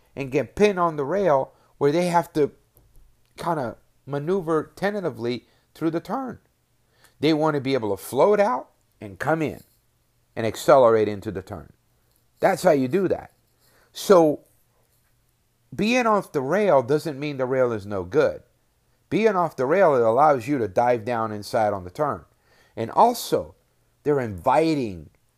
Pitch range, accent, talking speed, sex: 105-145 Hz, American, 160 wpm, male